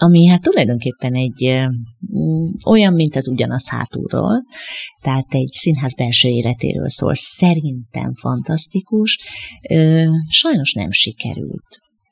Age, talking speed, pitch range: 30-49, 100 wpm, 130-175 Hz